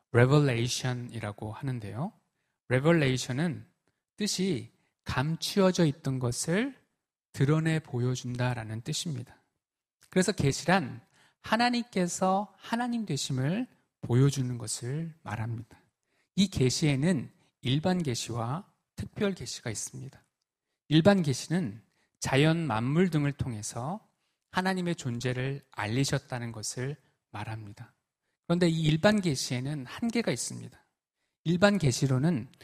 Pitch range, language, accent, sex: 125-185 Hz, Korean, native, male